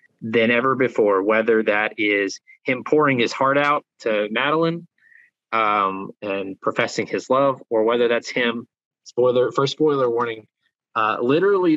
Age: 20-39